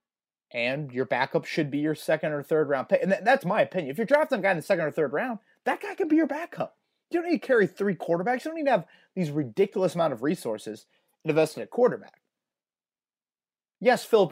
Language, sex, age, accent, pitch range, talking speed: English, male, 30-49, American, 145-205 Hz, 230 wpm